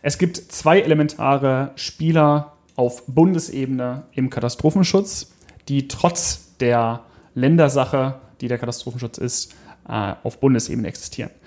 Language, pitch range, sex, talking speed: German, 120-155 Hz, male, 105 wpm